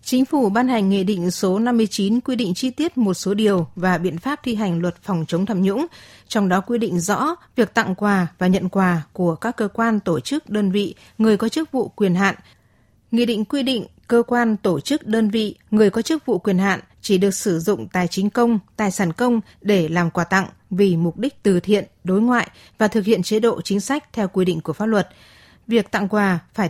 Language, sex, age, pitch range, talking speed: Vietnamese, female, 20-39, 185-230 Hz, 235 wpm